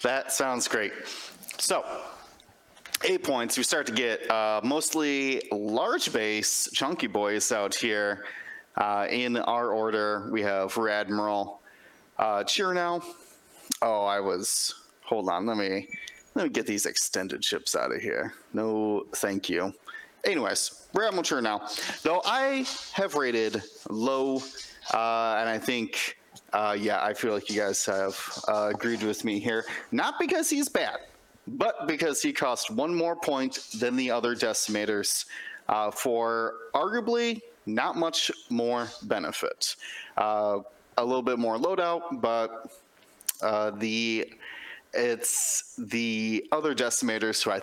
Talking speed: 140 wpm